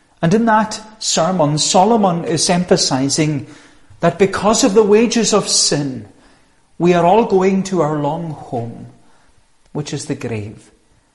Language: English